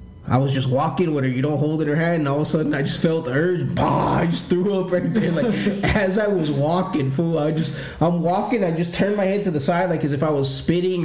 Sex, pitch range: male, 140-180 Hz